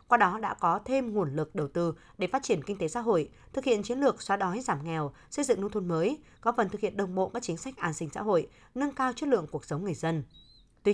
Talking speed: 280 wpm